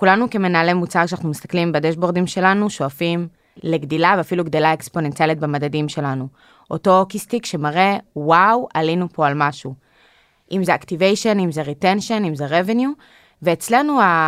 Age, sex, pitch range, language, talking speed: 20-39, female, 155-215 Hz, Hebrew, 135 wpm